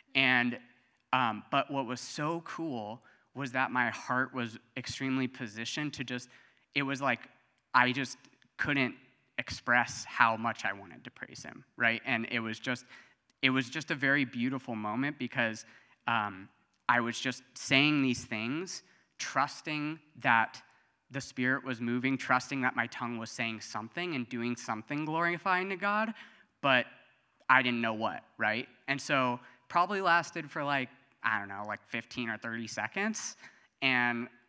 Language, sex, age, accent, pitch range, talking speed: English, male, 20-39, American, 115-135 Hz, 155 wpm